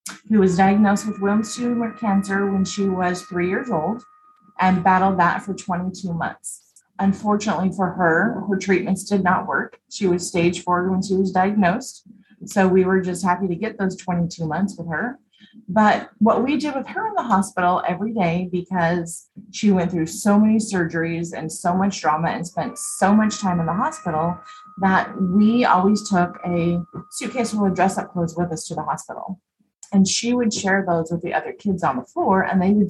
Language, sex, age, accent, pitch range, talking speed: English, female, 30-49, American, 175-210 Hz, 195 wpm